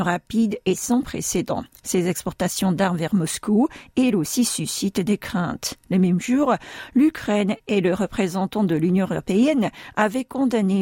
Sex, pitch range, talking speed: female, 180-235 Hz, 145 wpm